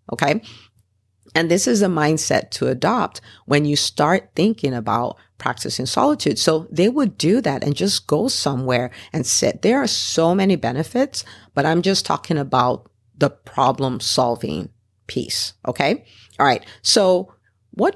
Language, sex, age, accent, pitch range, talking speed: English, female, 50-69, American, 115-160 Hz, 150 wpm